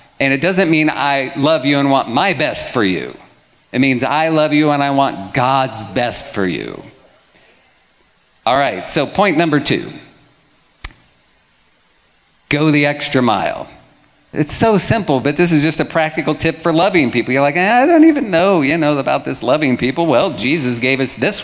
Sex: male